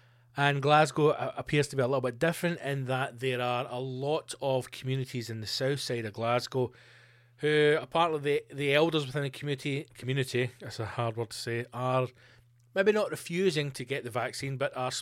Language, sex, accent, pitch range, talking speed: English, male, British, 125-155 Hz, 195 wpm